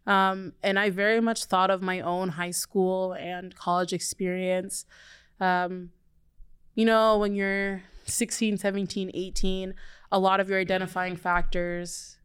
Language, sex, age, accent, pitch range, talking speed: English, female, 20-39, American, 180-195 Hz, 135 wpm